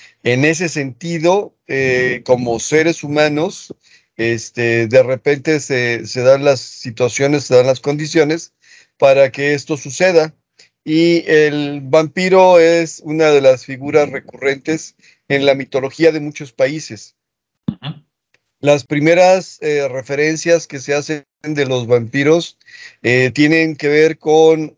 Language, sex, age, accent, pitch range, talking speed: Spanish, male, 40-59, Mexican, 130-155 Hz, 130 wpm